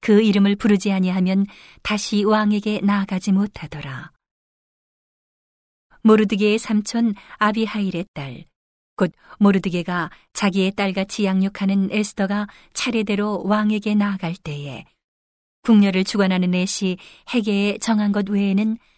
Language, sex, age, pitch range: Korean, female, 40-59, 175-210 Hz